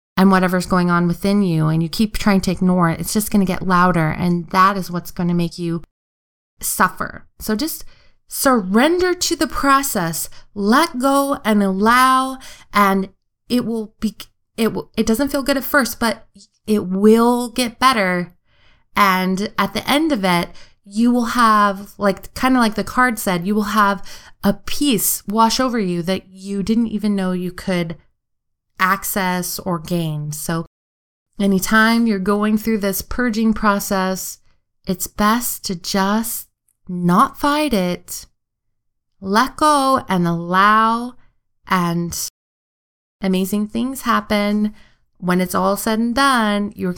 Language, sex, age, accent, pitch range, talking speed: English, female, 20-39, American, 185-250 Hz, 150 wpm